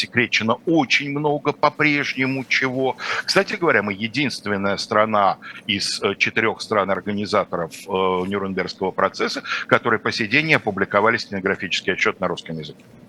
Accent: native